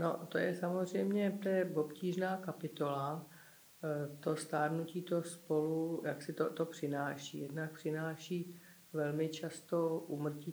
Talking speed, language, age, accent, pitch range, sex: 115 wpm, Czech, 50-69, native, 145-160 Hz, female